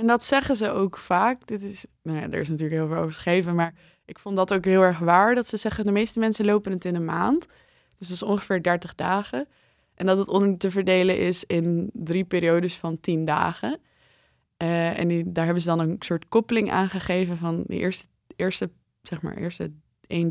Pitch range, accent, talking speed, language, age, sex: 170-210 Hz, Dutch, 220 wpm, Dutch, 20-39, female